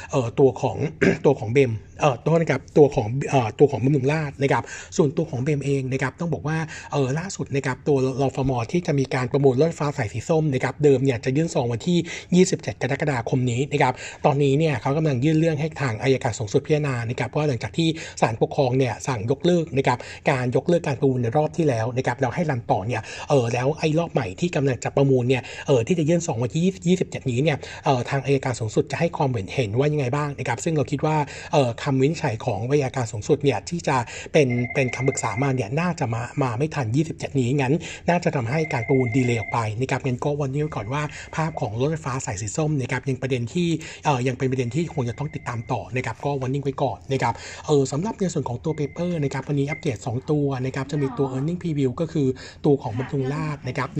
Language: Thai